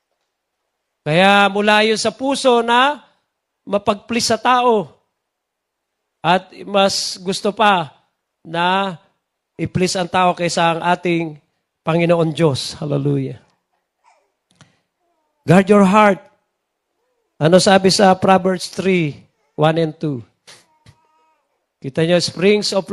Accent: native